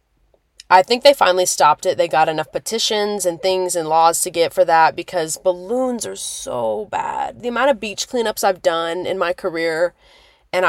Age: 20-39